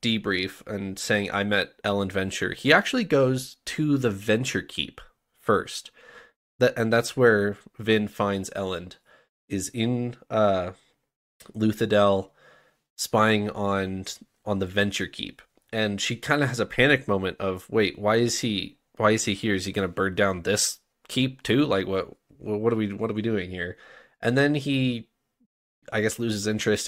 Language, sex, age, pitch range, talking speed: English, male, 20-39, 100-130 Hz, 165 wpm